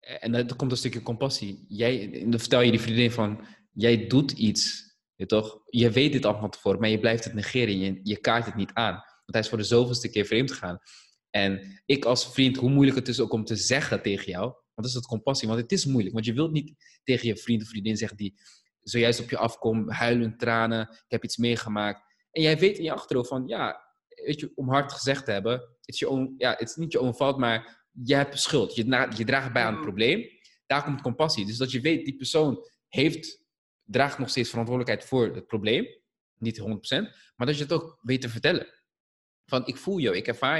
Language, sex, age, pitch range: Dutch, male, 20-39, 115-145 Hz